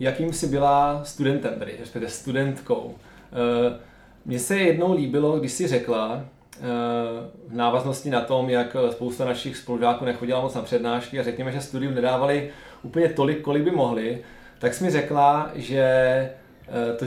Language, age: Czech, 20-39